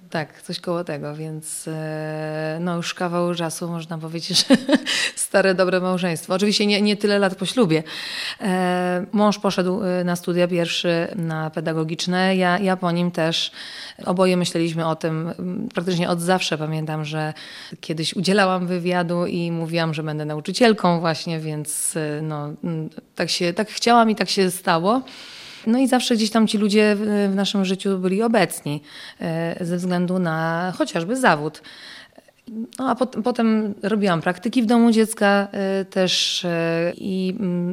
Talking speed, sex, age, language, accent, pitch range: 140 wpm, female, 30-49, Polish, native, 165-200 Hz